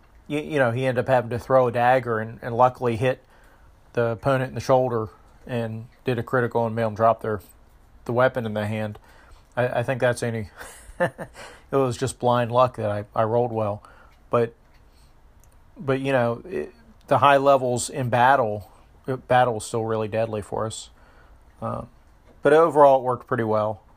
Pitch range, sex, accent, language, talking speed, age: 110-125 Hz, male, American, English, 190 wpm, 40-59